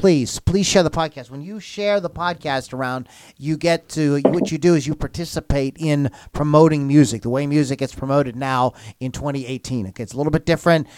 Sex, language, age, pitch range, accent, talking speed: male, English, 40-59, 135-170 Hz, American, 200 wpm